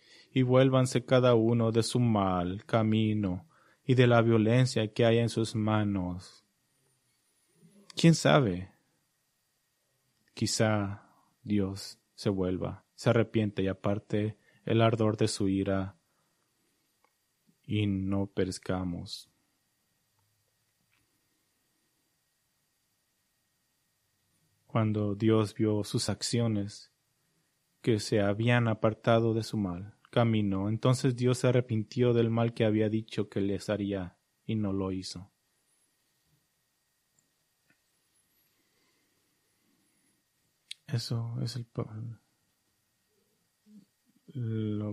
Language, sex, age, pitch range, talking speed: English, male, 30-49, 105-120 Hz, 90 wpm